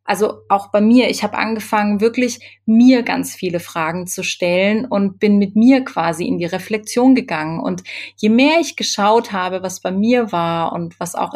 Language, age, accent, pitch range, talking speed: German, 30-49, German, 180-225 Hz, 190 wpm